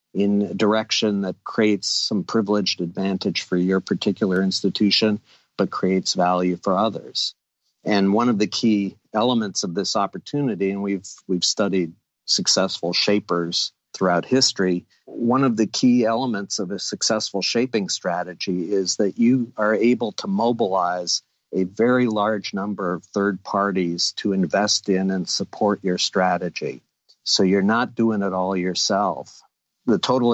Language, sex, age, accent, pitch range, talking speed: English, male, 50-69, American, 95-110 Hz, 145 wpm